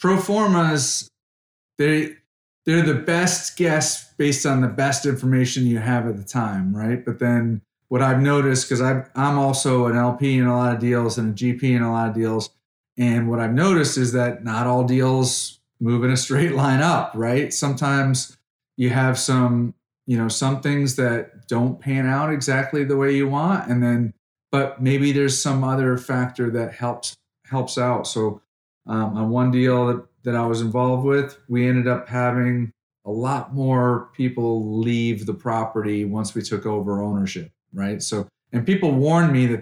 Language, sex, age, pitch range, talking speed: English, male, 30-49, 115-140 Hz, 180 wpm